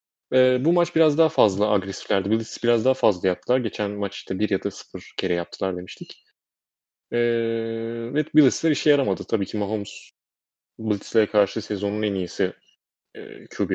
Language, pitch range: Turkish, 100-130 Hz